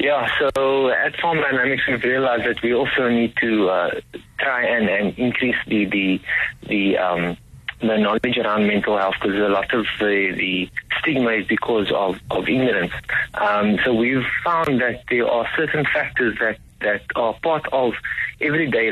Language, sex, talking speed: English, male, 170 wpm